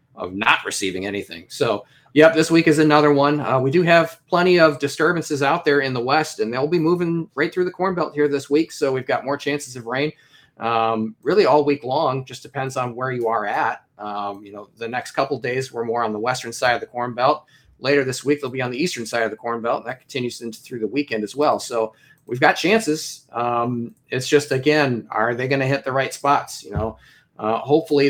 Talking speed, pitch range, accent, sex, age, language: 240 wpm, 115-150 Hz, American, male, 30-49, English